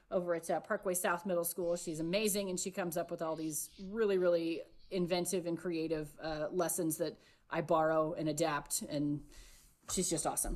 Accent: American